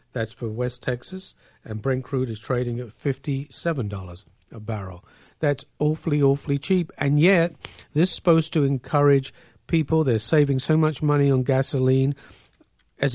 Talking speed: 150 wpm